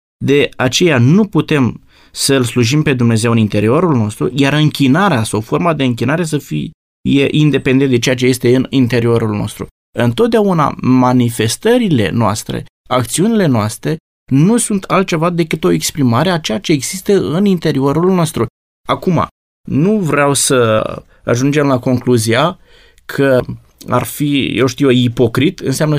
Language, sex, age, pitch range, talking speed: Romanian, male, 20-39, 125-170 Hz, 135 wpm